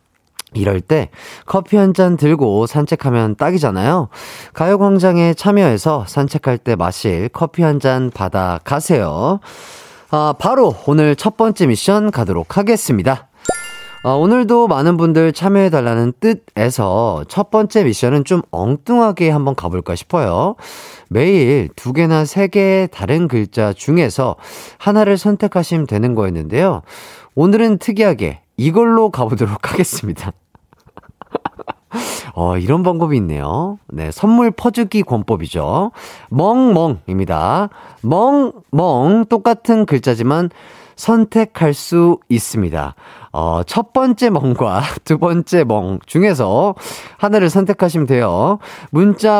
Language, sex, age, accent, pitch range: Korean, male, 30-49, native, 120-200 Hz